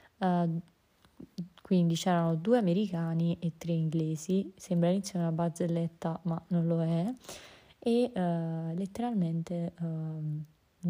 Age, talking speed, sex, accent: 20-39, 110 wpm, female, native